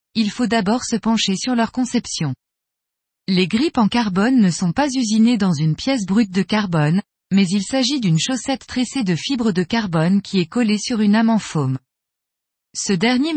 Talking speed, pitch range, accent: 185 wpm, 180-245 Hz, French